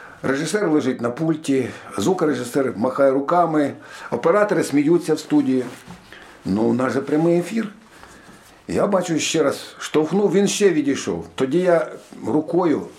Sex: male